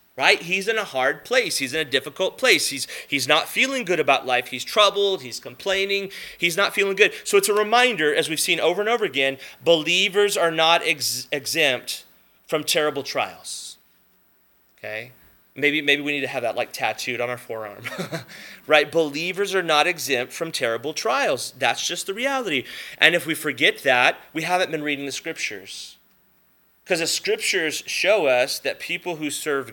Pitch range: 150-215 Hz